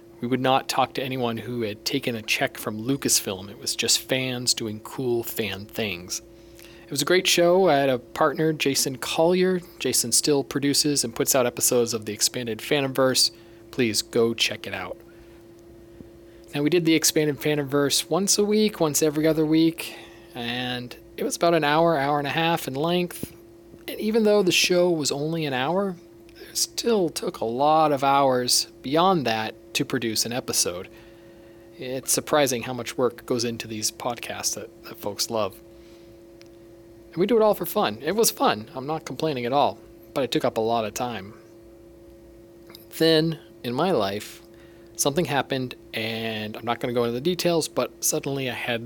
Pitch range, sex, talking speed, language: 115-150 Hz, male, 185 wpm, English